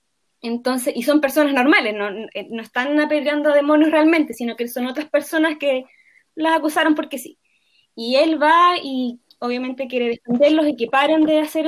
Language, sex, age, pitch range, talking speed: Spanish, female, 20-39, 240-310 Hz, 175 wpm